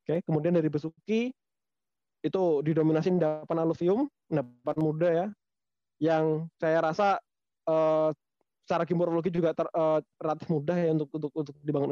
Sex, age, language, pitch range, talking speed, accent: male, 20-39, Indonesian, 150-185 Hz, 135 wpm, native